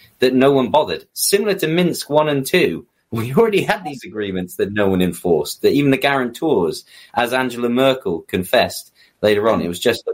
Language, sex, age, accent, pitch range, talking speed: English, male, 30-49, British, 95-130 Hz, 195 wpm